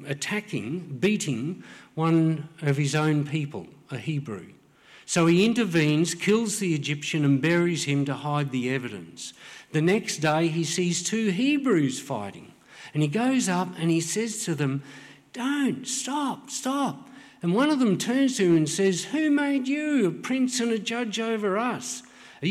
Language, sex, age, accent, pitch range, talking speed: English, male, 50-69, Australian, 160-235 Hz, 165 wpm